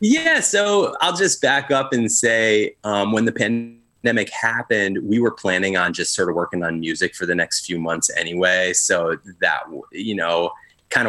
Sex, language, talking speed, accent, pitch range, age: male, English, 185 wpm, American, 85-115 Hz, 20-39